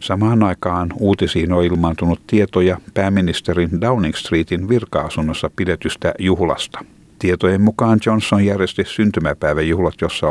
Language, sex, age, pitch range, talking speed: Finnish, male, 60-79, 80-100 Hz, 105 wpm